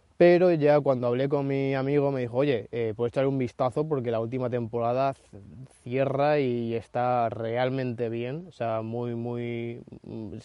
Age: 20-39